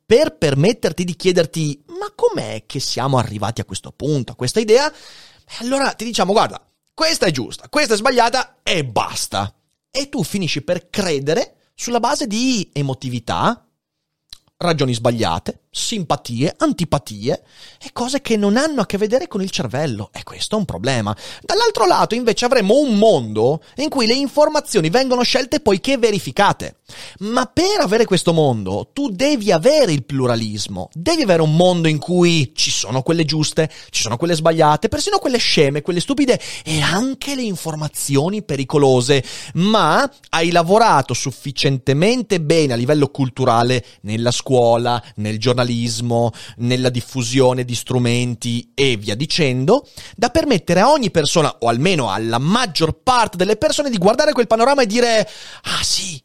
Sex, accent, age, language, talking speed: male, native, 30-49, Italian, 155 wpm